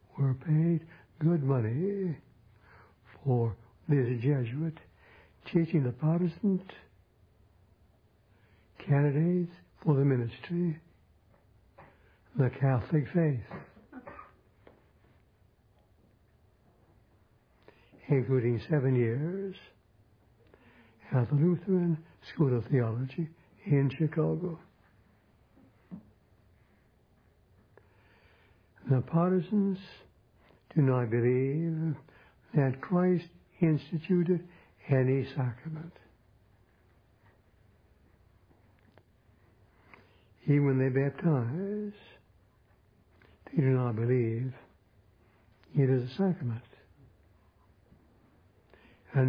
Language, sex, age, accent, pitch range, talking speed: English, male, 60-79, American, 105-155 Hz, 60 wpm